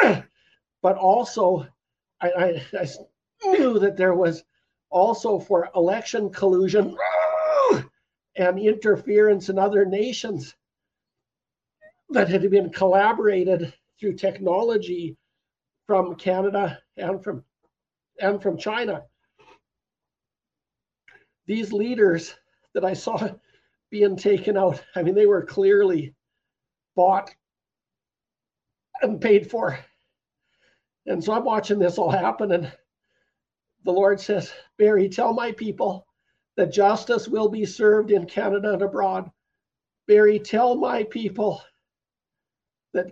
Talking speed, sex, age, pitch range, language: 105 wpm, male, 60-79, 185-220 Hz, English